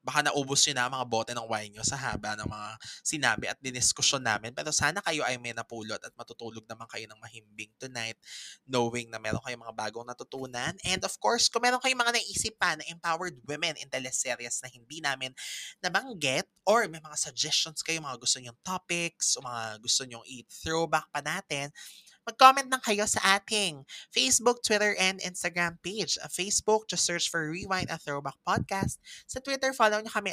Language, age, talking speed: Filipino, 20-39, 190 wpm